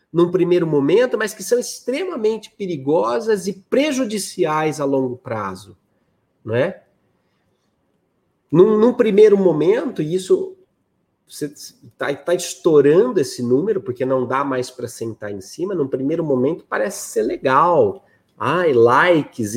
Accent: Brazilian